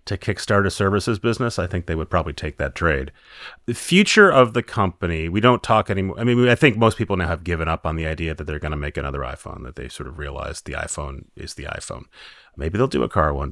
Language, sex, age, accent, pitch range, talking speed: English, male, 30-49, American, 80-100 Hz, 255 wpm